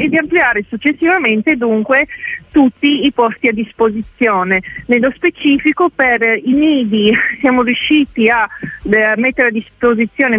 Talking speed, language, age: 120 wpm, Italian, 40-59